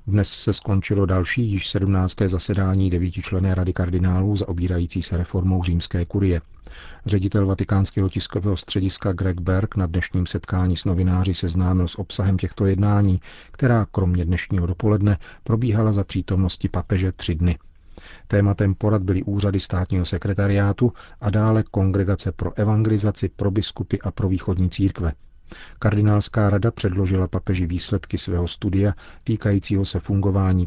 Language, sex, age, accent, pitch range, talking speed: Czech, male, 40-59, native, 90-100 Hz, 135 wpm